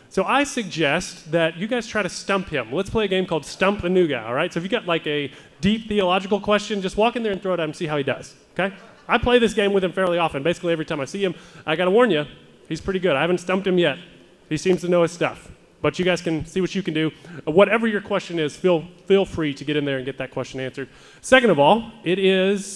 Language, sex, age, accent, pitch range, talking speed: English, male, 30-49, American, 150-200 Hz, 280 wpm